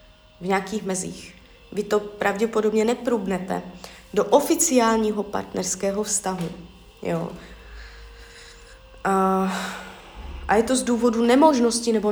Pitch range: 180-220 Hz